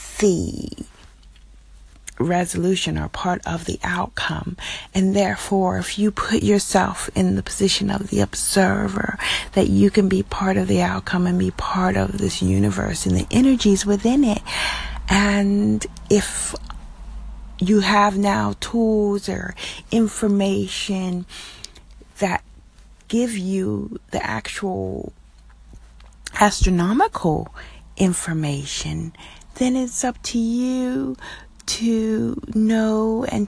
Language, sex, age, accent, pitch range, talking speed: English, female, 40-59, American, 145-215 Hz, 110 wpm